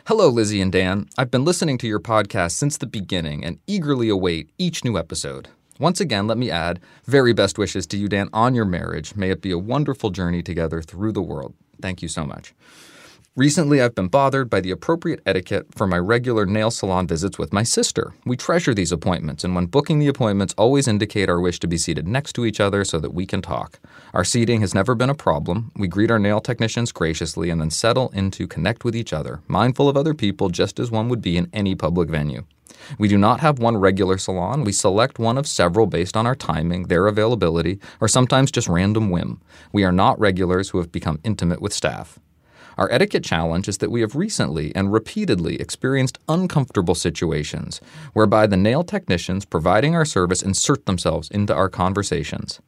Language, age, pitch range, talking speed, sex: English, 30-49, 90-125 Hz, 205 wpm, male